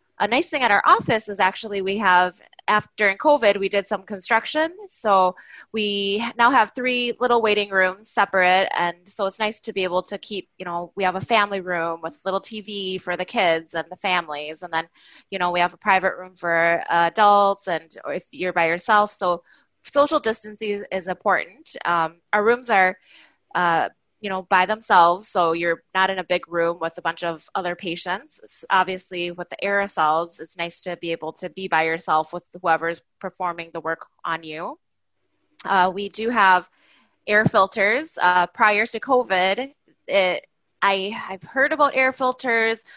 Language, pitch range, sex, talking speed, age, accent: English, 175-215 Hz, female, 180 wpm, 20-39, American